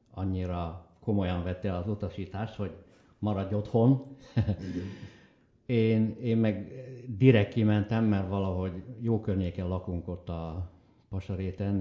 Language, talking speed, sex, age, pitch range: Hungarian, 105 wpm, male, 60-79, 90-115 Hz